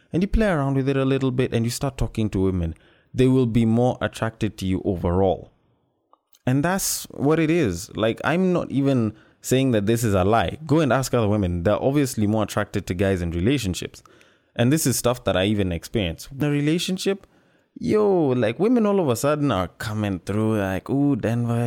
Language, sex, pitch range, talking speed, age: English, male, 100-135 Hz, 205 wpm, 20-39